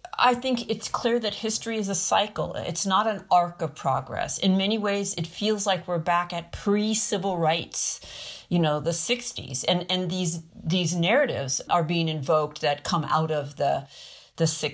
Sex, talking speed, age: female, 180 wpm, 50-69